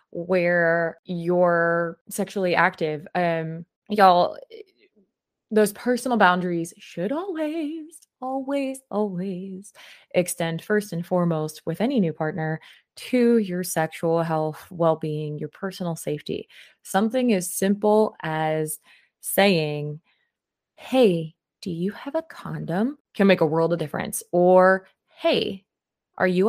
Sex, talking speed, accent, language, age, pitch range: female, 115 wpm, American, English, 20-39, 165-210 Hz